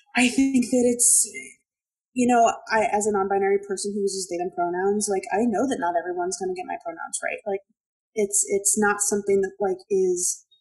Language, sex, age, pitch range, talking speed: English, female, 20-39, 195-265 Hz, 200 wpm